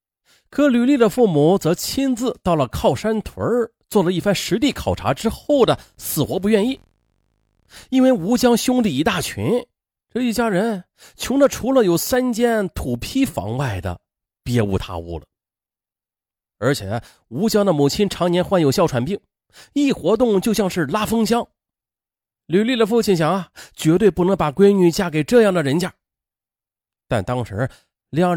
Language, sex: Chinese, male